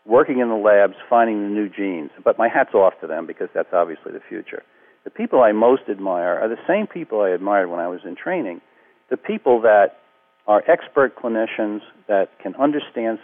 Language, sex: English, male